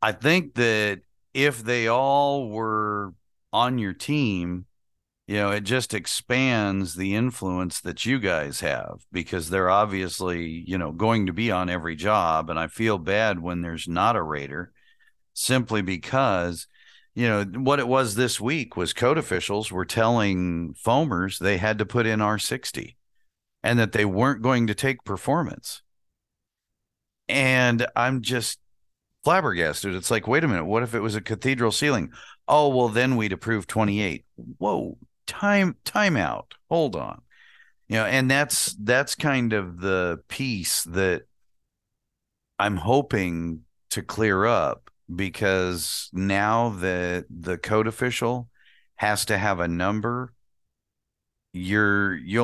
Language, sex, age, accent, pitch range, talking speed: English, male, 50-69, American, 95-120 Hz, 145 wpm